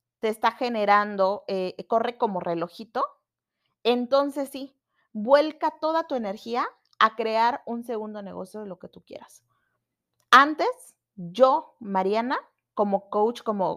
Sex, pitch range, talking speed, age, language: female, 190-250 Hz, 125 wpm, 30-49, Spanish